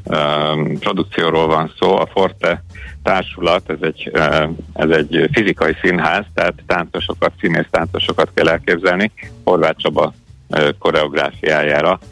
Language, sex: Hungarian, male